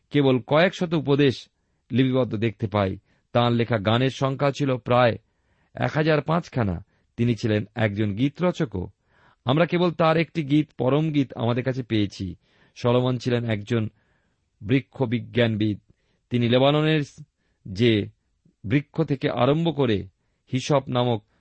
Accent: native